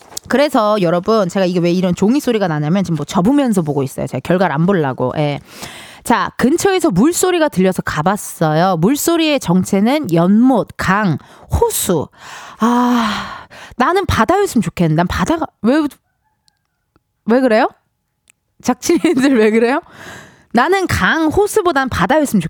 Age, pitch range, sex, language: 20-39, 190-315 Hz, female, Korean